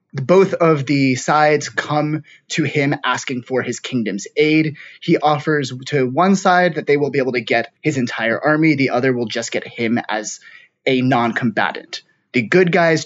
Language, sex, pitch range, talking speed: English, male, 125-170 Hz, 180 wpm